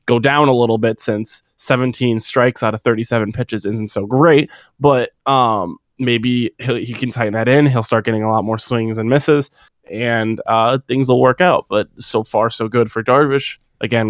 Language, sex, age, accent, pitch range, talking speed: English, male, 20-39, American, 110-120 Hz, 200 wpm